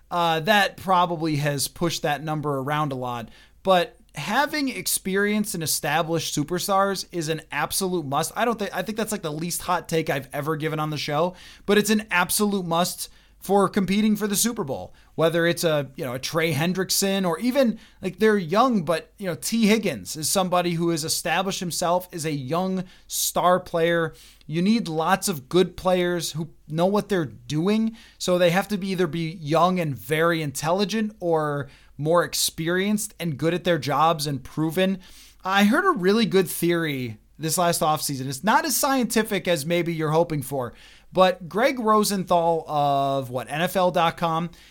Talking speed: 180 wpm